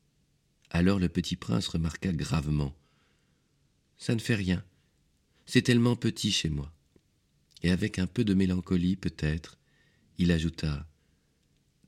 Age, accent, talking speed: 40-59, French, 135 wpm